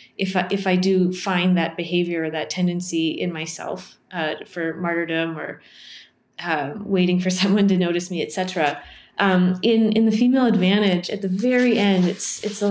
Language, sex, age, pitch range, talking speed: English, female, 20-39, 175-205 Hz, 180 wpm